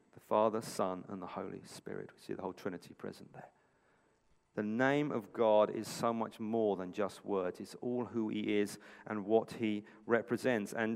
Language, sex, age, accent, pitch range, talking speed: English, male, 40-59, British, 105-130 Hz, 185 wpm